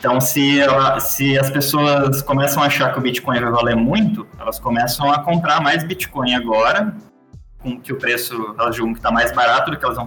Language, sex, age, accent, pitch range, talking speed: Portuguese, male, 20-39, Brazilian, 125-155 Hz, 210 wpm